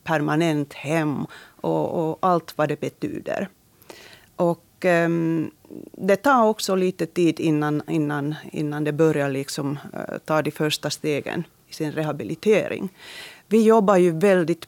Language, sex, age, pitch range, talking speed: Swedish, female, 40-59, 150-175 Hz, 135 wpm